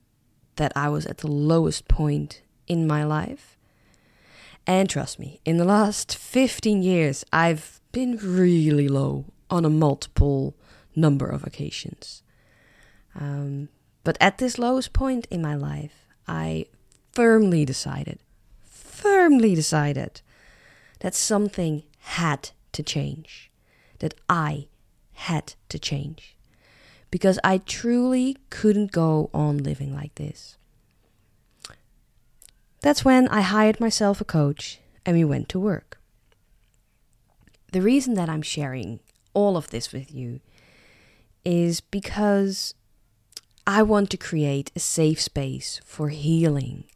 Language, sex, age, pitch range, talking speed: English, female, 20-39, 135-190 Hz, 120 wpm